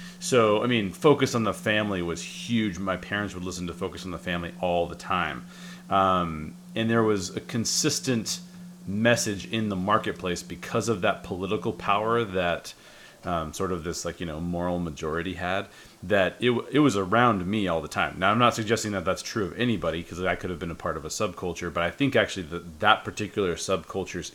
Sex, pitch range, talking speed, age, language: male, 90-110 Hz, 205 wpm, 30-49, English